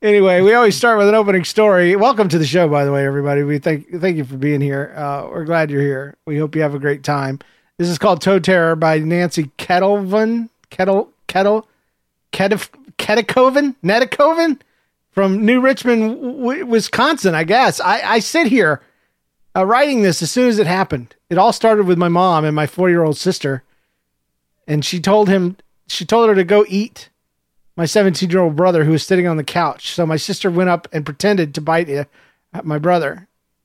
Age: 40-59